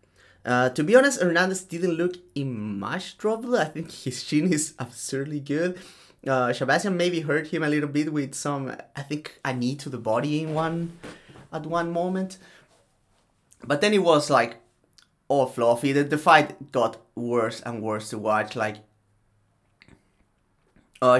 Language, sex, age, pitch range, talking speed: English, male, 30-49, 115-145 Hz, 160 wpm